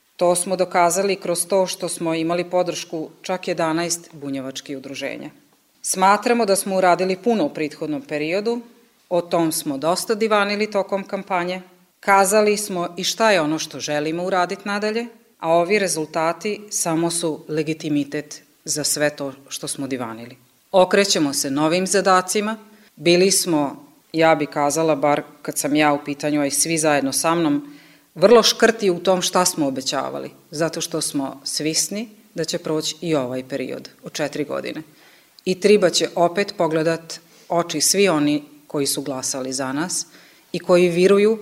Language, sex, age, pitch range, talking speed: Croatian, female, 30-49, 150-195 Hz, 155 wpm